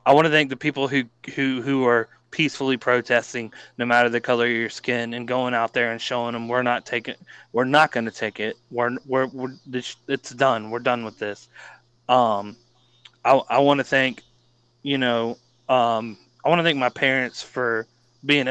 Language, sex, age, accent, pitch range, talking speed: English, male, 20-39, American, 120-135 Hz, 200 wpm